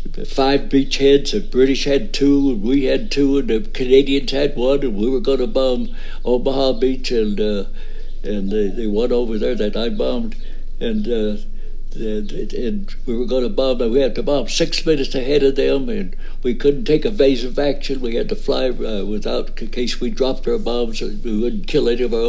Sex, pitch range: male, 125-160 Hz